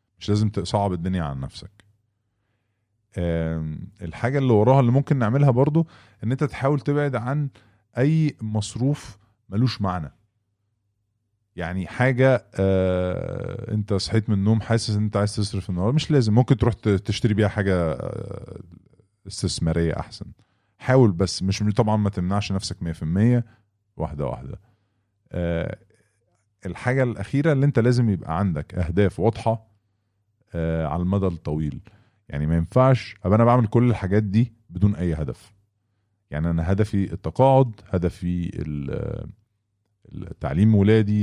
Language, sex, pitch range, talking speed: English, male, 90-110 Hz, 125 wpm